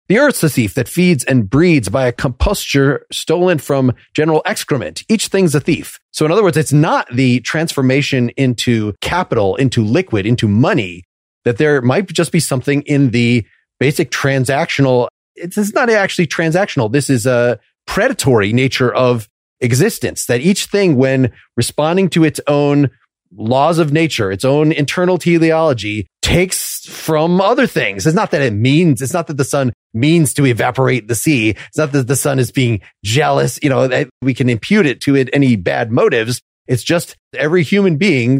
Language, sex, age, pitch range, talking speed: English, male, 30-49, 120-160 Hz, 175 wpm